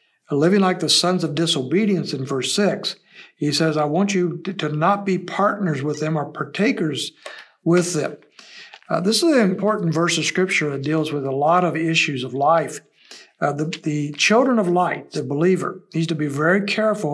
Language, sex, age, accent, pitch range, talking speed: English, male, 60-79, American, 155-190 Hz, 190 wpm